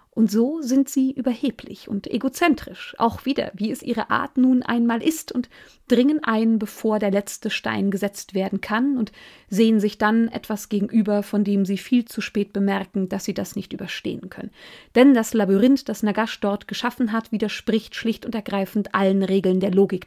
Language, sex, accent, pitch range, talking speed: German, female, German, 205-235 Hz, 180 wpm